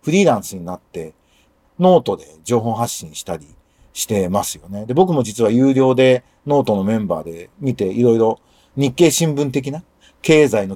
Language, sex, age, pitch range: Japanese, male, 40-59, 115-185 Hz